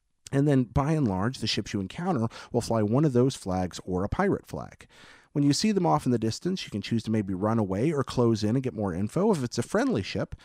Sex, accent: male, American